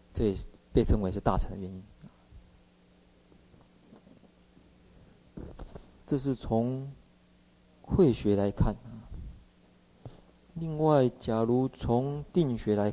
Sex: male